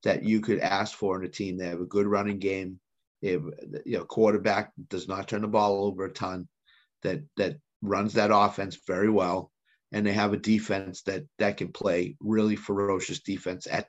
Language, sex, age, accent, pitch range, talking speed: English, male, 30-49, American, 100-115 Hz, 200 wpm